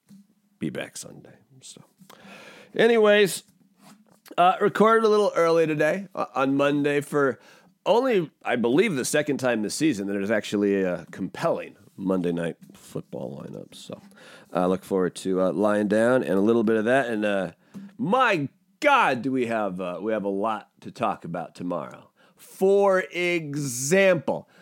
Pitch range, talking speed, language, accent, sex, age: 130-205 Hz, 160 wpm, English, American, male, 30-49